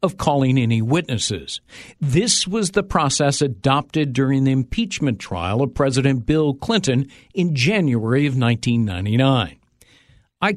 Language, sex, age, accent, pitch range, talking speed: English, male, 50-69, American, 120-160 Hz, 120 wpm